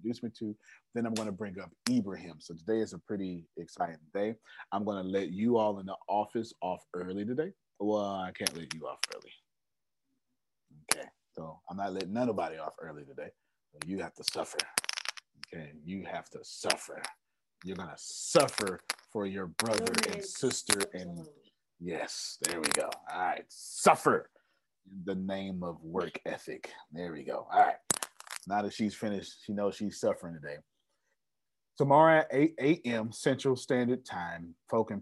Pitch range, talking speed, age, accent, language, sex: 90-115 Hz, 170 wpm, 30-49, American, English, male